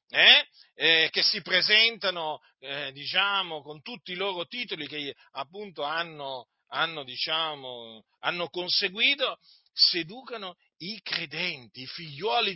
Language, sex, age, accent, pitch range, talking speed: Italian, male, 40-59, native, 150-205 Hz, 115 wpm